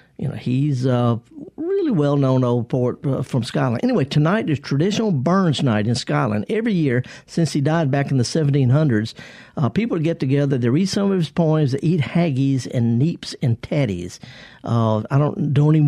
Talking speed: 190 wpm